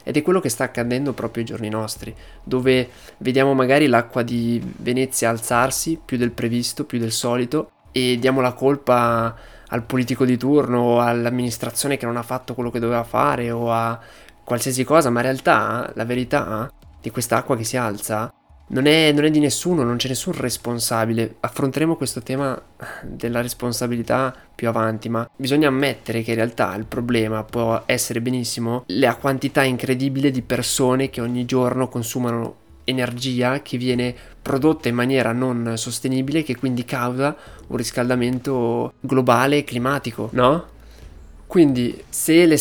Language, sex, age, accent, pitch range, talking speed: Italian, male, 20-39, native, 115-135 Hz, 160 wpm